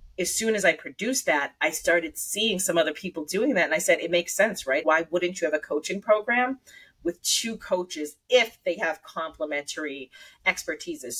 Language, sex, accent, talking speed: English, female, American, 195 wpm